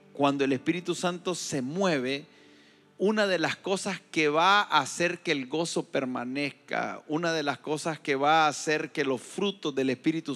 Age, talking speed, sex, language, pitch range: 40-59, 180 wpm, male, Spanish, 140-190 Hz